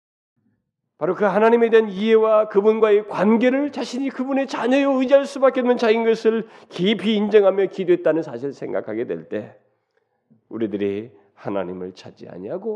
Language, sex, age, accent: Korean, male, 40-59, native